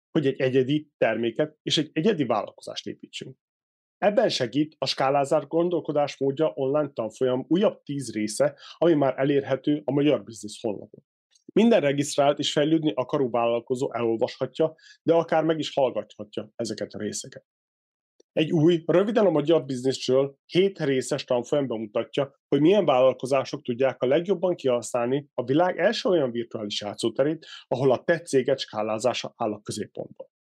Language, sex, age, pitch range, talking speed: Hungarian, male, 30-49, 130-160 Hz, 140 wpm